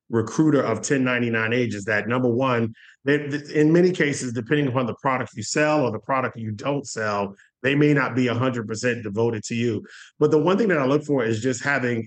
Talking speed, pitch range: 220 wpm, 120-145 Hz